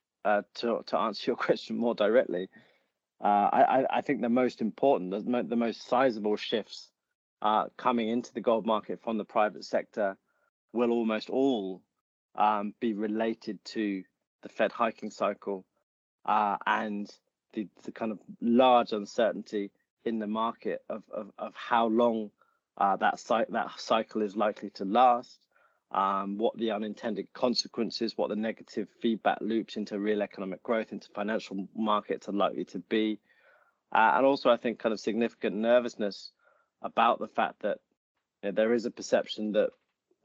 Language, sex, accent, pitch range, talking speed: English, male, British, 105-120 Hz, 160 wpm